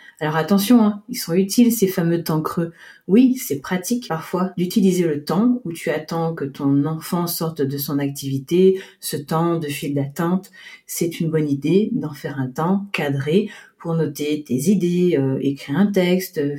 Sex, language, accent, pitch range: female, French, French, 160-205 Hz